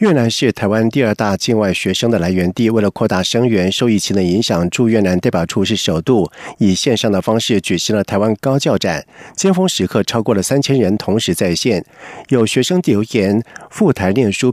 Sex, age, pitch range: male, 50-69, 100-135 Hz